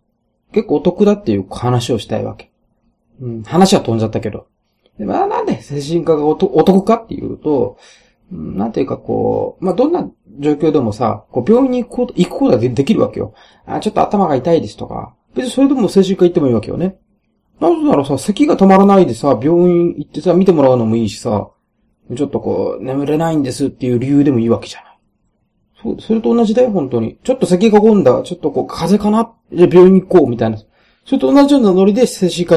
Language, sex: Japanese, male